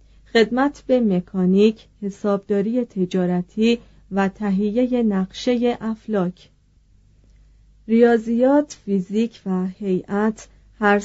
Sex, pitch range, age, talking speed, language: female, 195-240 Hz, 40-59, 75 wpm, Persian